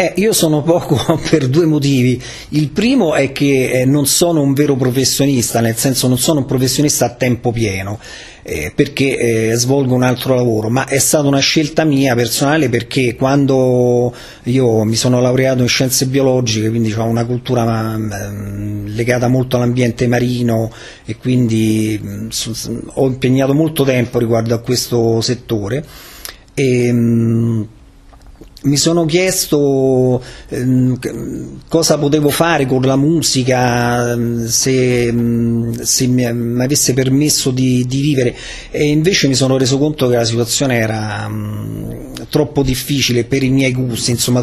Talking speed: 135 wpm